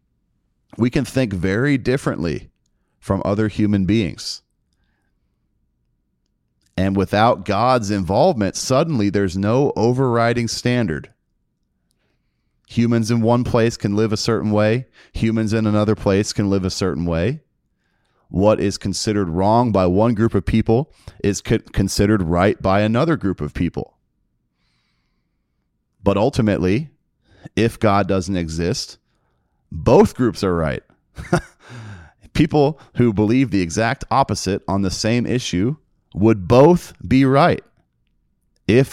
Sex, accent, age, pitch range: male, American, 30-49, 95-115 Hz